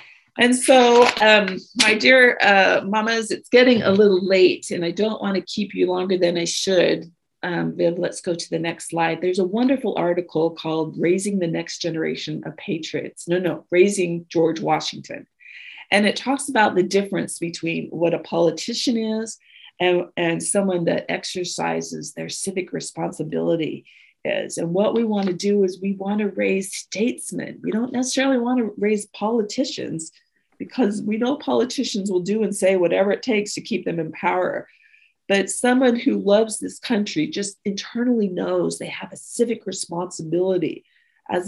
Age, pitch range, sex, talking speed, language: 40-59, 170-225 Hz, female, 170 wpm, English